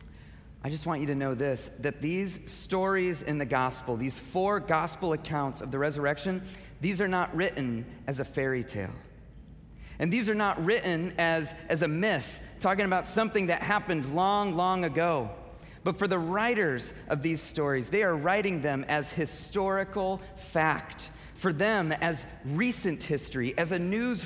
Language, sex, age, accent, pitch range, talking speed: English, male, 30-49, American, 130-185 Hz, 165 wpm